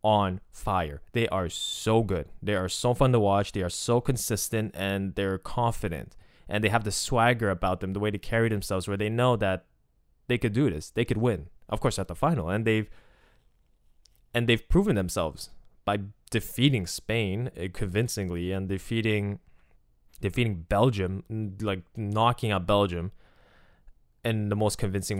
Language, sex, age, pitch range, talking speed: English, male, 20-39, 90-115 Hz, 165 wpm